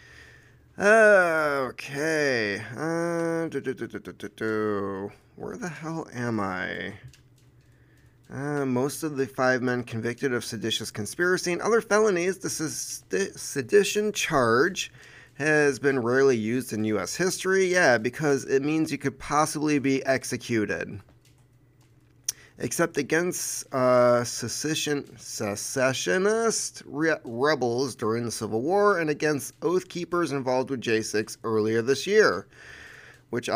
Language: English